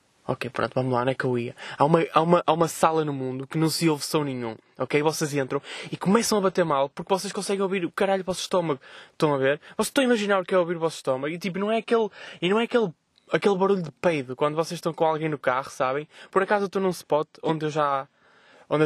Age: 20-39